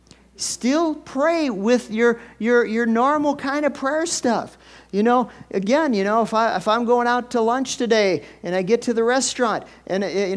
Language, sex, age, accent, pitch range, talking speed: English, male, 50-69, American, 155-230 Hz, 190 wpm